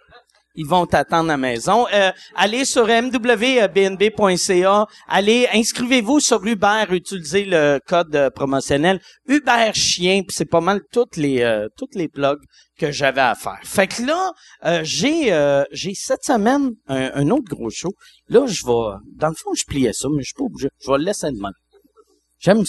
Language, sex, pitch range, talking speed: French, male, 145-235 Hz, 185 wpm